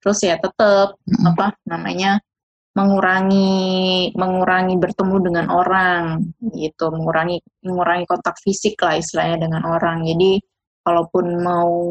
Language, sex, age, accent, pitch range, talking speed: Indonesian, female, 20-39, native, 175-200 Hz, 110 wpm